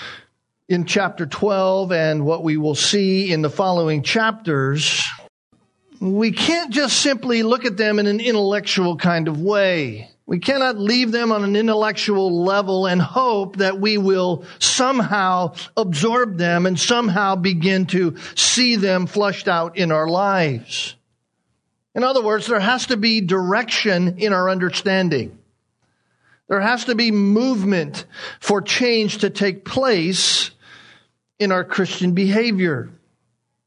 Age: 50-69